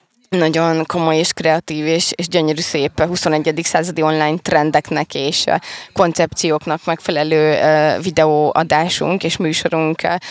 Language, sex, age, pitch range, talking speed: Hungarian, female, 20-39, 160-185 Hz, 115 wpm